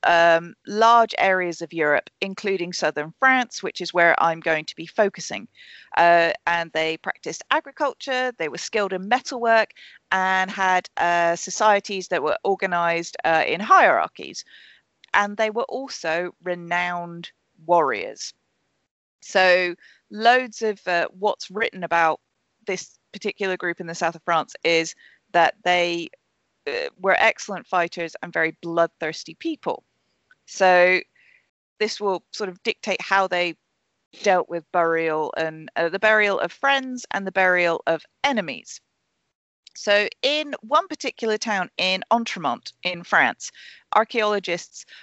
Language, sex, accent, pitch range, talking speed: English, female, British, 175-225 Hz, 135 wpm